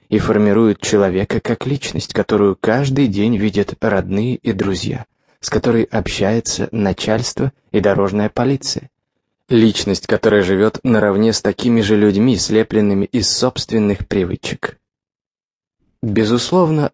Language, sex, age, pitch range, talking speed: English, male, 20-39, 105-125 Hz, 115 wpm